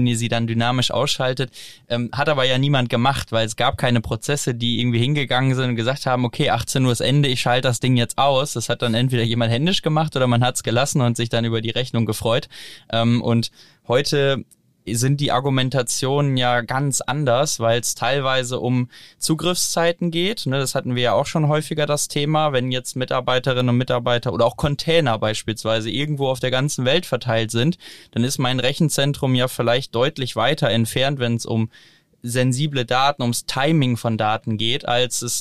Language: German